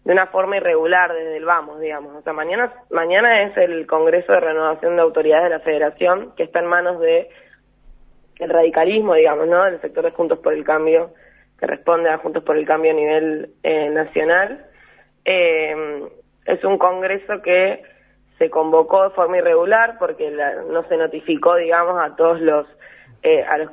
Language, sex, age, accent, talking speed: Spanish, female, 20-39, Argentinian, 180 wpm